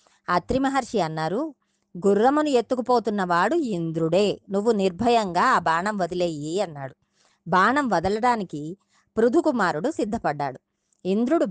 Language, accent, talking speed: Telugu, native, 85 wpm